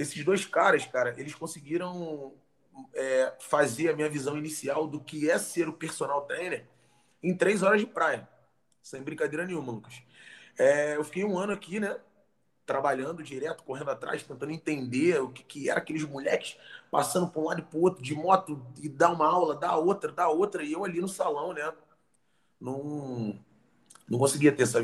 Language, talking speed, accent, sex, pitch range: Portuguese, 180 wpm, Brazilian, male, 140-180 Hz